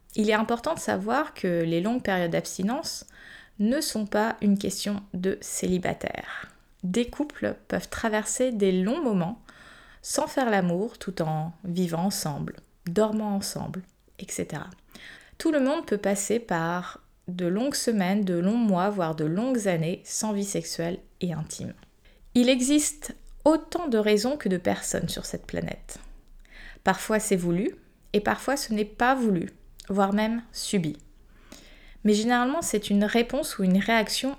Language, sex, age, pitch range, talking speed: French, female, 20-39, 185-230 Hz, 150 wpm